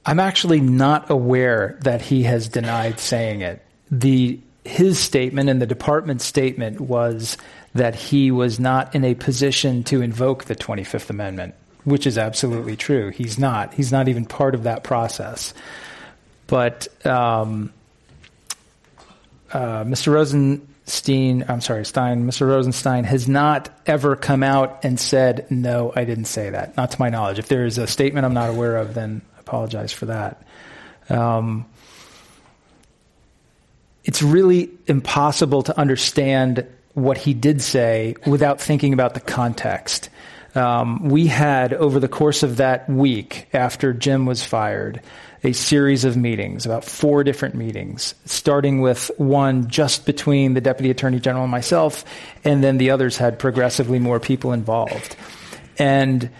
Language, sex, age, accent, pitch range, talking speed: English, male, 40-59, American, 120-140 Hz, 150 wpm